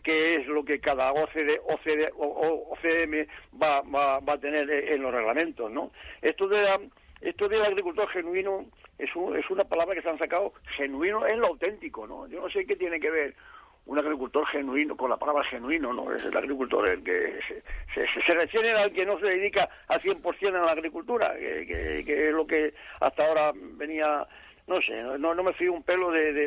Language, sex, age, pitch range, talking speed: Spanish, male, 60-79, 150-210 Hz, 210 wpm